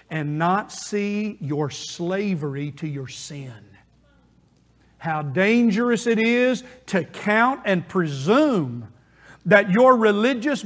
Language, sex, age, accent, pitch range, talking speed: English, male, 50-69, American, 170-240 Hz, 105 wpm